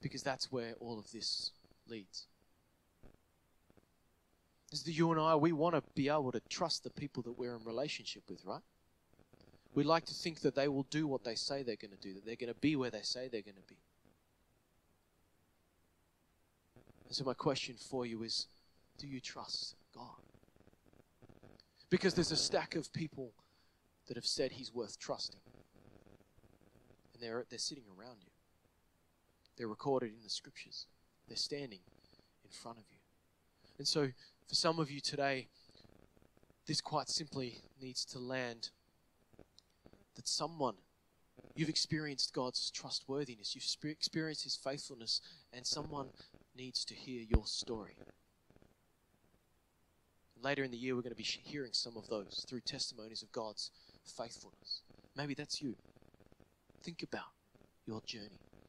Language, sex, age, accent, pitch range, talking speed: English, male, 20-39, Australian, 100-140 Hz, 150 wpm